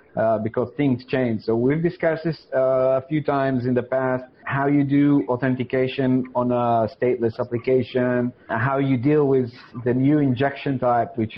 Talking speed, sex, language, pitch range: 170 wpm, male, English, 120-140 Hz